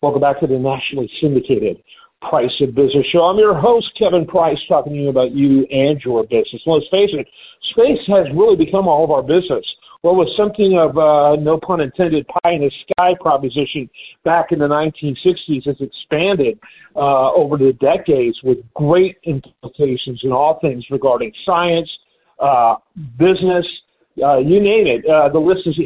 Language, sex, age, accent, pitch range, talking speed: English, male, 50-69, American, 145-185 Hz, 170 wpm